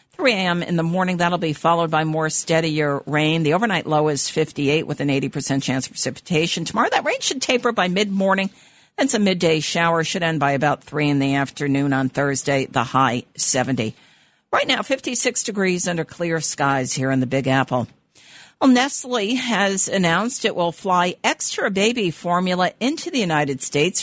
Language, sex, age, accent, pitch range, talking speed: English, female, 50-69, American, 150-200 Hz, 180 wpm